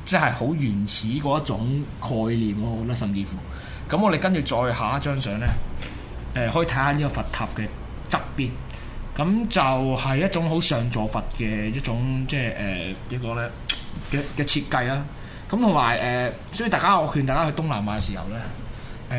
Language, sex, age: Chinese, male, 20-39